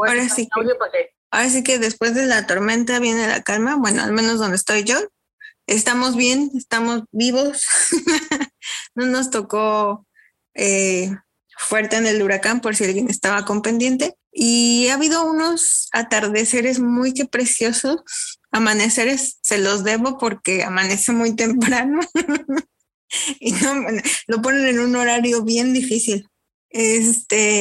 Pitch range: 210-255 Hz